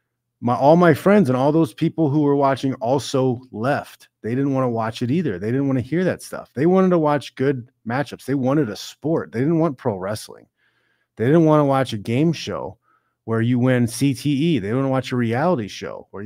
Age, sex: 30-49, male